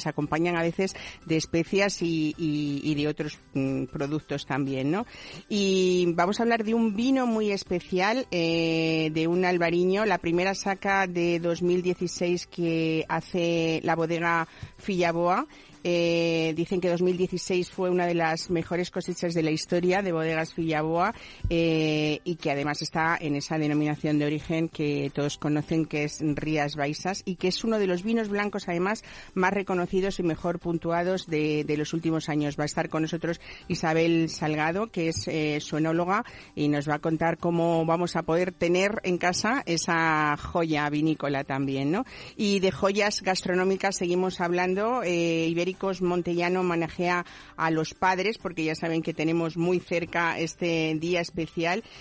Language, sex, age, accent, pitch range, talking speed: Spanish, female, 50-69, Spanish, 160-180 Hz, 165 wpm